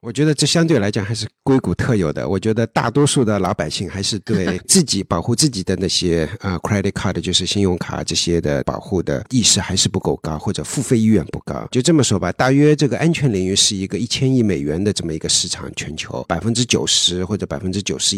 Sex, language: male, Chinese